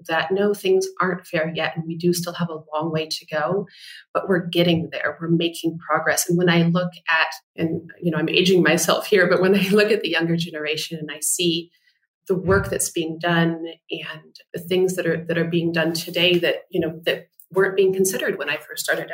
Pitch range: 165-190 Hz